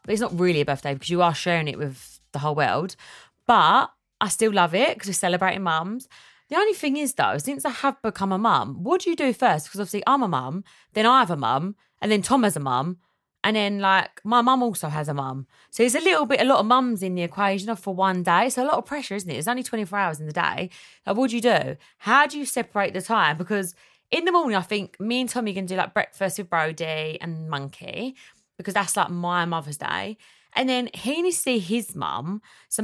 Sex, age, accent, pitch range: female, 20-39, British, 180-245 Hz